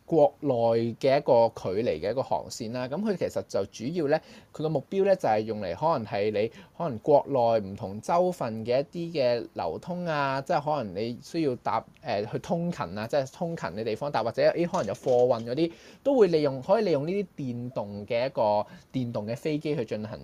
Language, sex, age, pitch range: Chinese, male, 20-39, 115-180 Hz